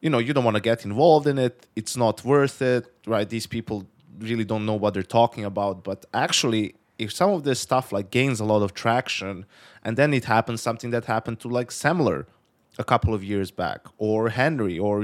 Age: 20-39